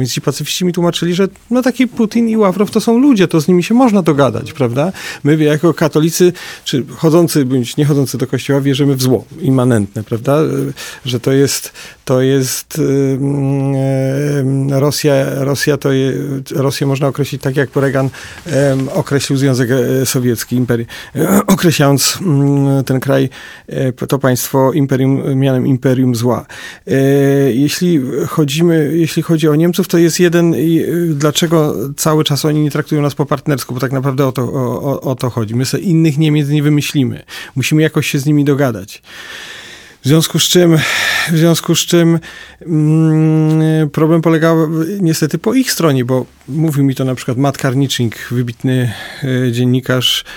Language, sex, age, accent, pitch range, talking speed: Polish, male, 40-59, native, 130-160 Hz, 140 wpm